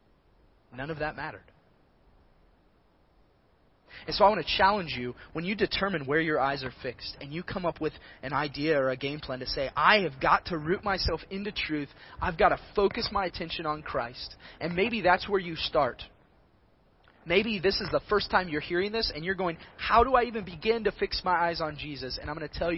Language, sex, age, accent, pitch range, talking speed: English, male, 30-49, American, 150-205 Hz, 215 wpm